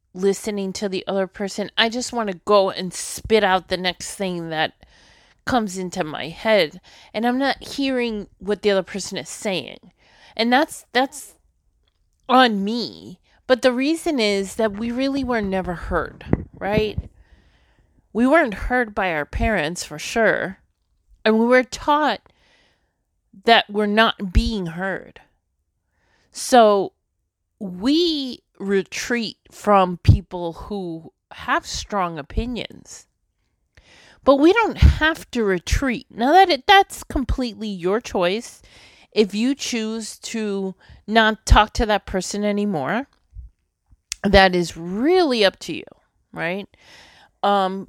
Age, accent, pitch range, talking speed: 30-49, American, 180-240 Hz, 130 wpm